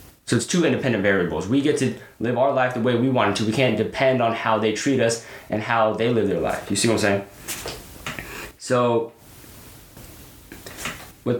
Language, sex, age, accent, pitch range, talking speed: English, male, 20-39, American, 115-140 Hz, 200 wpm